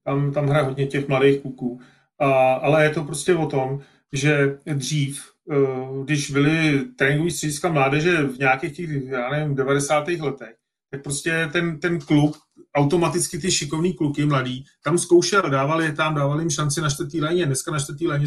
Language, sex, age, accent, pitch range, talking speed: Czech, male, 30-49, native, 140-170 Hz, 175 wpm